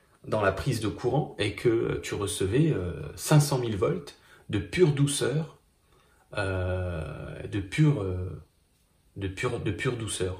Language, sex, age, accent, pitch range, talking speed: French, male, 30-49, French, 95-135 Hz, 145 wpm